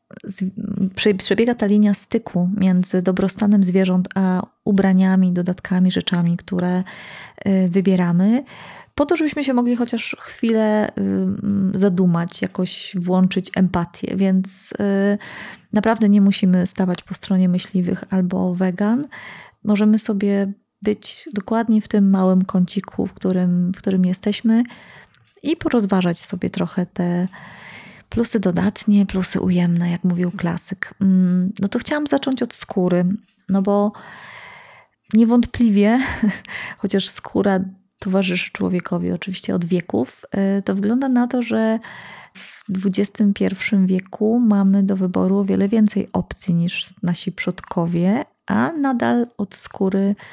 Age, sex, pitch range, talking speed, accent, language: 20-39, female, 185-215 Hz, 115 wpm, native, Polish